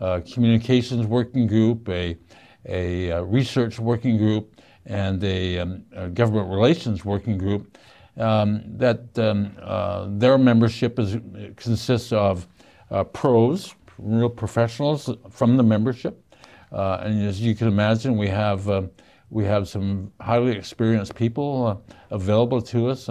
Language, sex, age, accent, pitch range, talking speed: English, male, 60-79, American, 100-125 Hz, 135 wpm